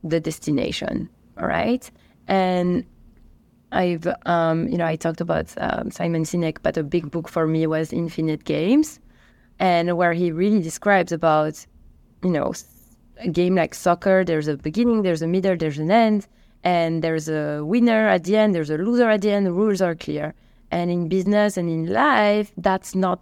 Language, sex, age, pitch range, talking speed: English, female, 20-39, 170-230 Hz, 180 wpm